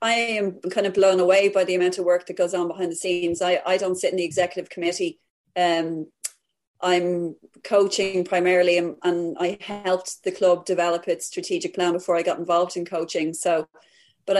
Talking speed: 195 wpm